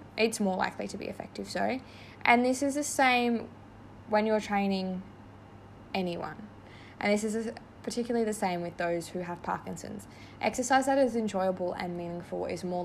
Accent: Australian